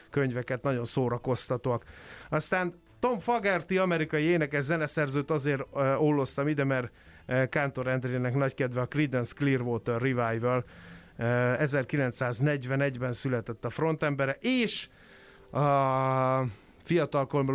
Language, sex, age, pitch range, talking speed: Hungarian, male, 30-49, 130-160 Hz, 95 wpm